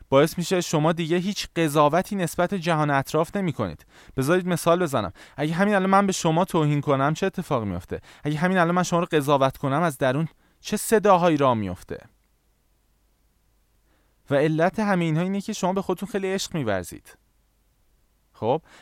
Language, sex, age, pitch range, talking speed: Persian, male, 20-39, 120-175 Hz, 165 wpm